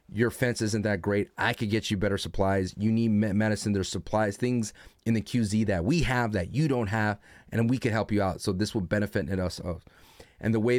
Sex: male